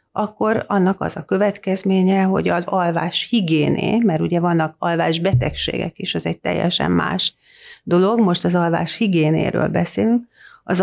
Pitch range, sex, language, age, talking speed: 165-215 Hz, female, Hungarian, 40-59, 145 wpm